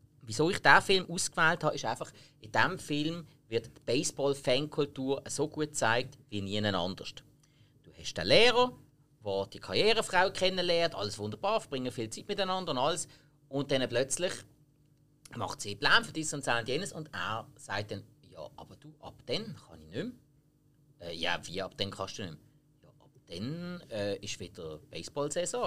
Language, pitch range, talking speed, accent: German, 125-175 Hz, 180 wpm, Austrian